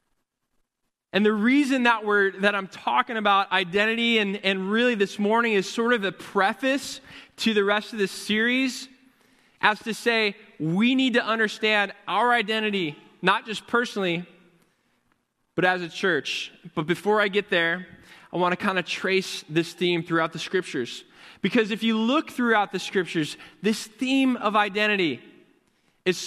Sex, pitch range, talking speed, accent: male, 180-225 Hz, 160 wpm, American